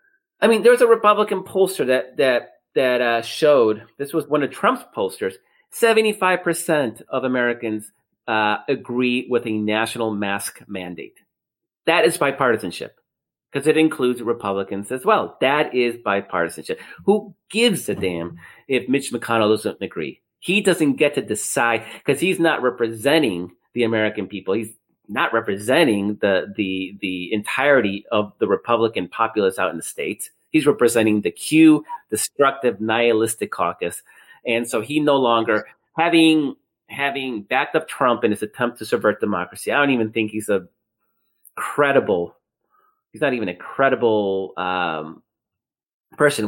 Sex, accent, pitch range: male, American, 105-160 Hz